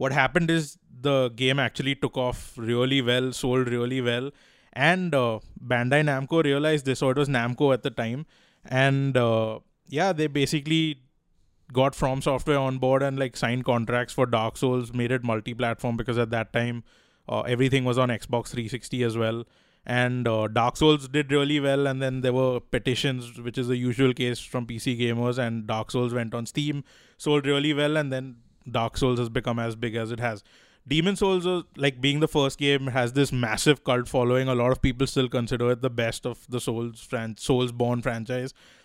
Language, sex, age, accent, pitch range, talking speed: English, male, 20-39, Indian, 120-140 Hz, 195 wpm